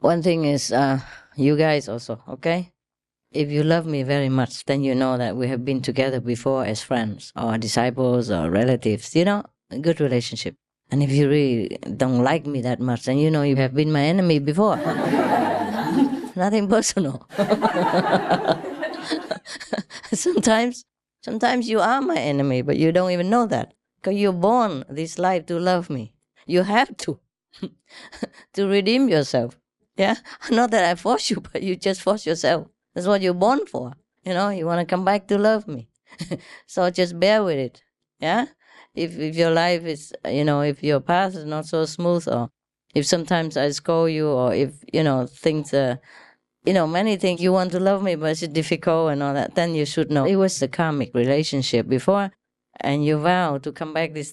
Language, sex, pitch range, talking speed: English, female, 140-185 Hz, 185 wpm